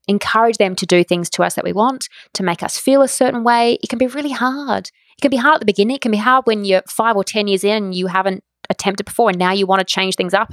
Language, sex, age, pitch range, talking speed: English, female, 20-39, 195-235 Hz, 300 wpm